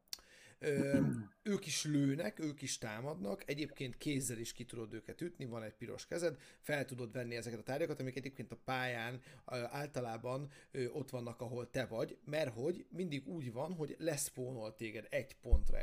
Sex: male